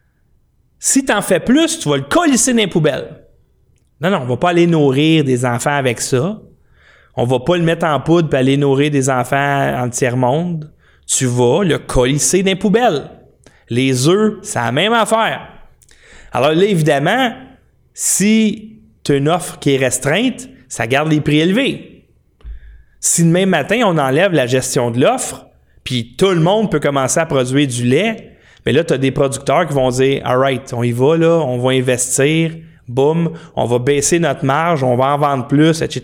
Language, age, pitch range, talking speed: French, 30-49, 130-175 Hz, 200 wpm